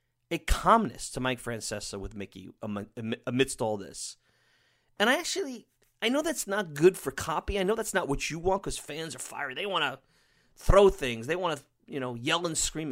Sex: male